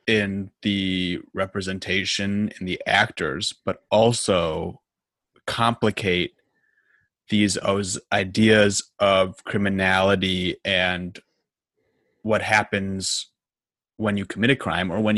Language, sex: English, male